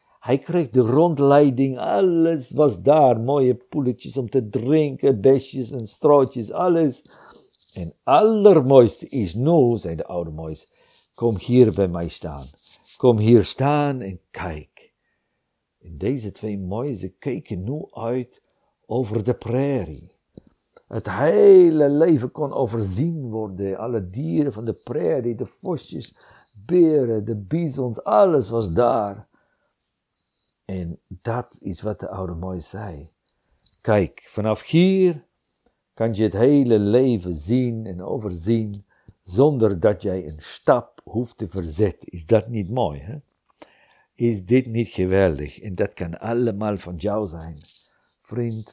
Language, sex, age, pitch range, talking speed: Dutch, male, 50-69, 95-135 Hz, 135 wpm